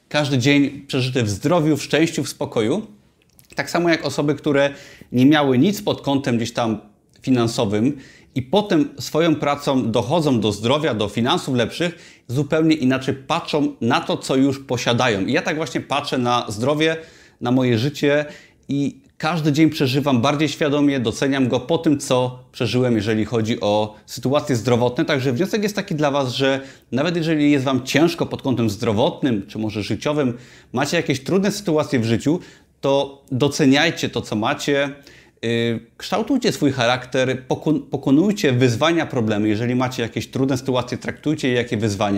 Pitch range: 120-150 Hz